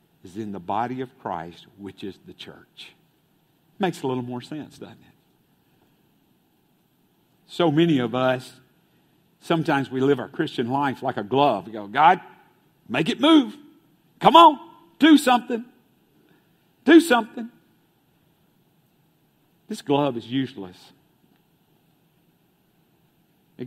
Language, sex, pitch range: English, male, 130-170 Hz